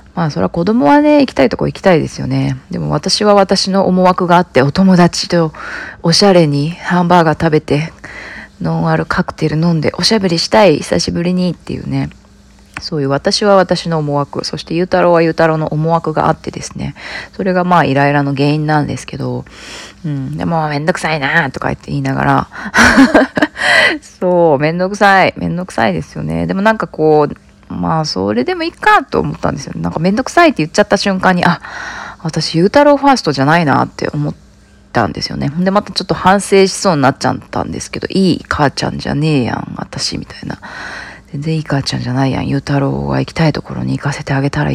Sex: female